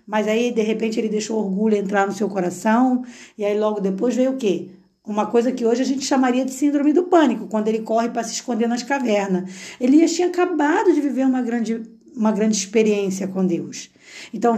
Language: Portuguese